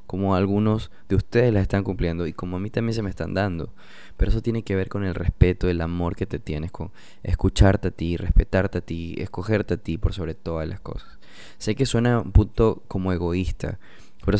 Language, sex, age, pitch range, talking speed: Spanish, male, 20-39, 85-105 Hz, 215 wpm